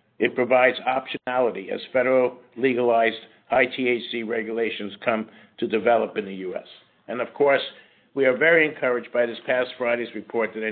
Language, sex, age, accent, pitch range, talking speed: English, male, 60-79, American, 115-135 Hz, 155 wpm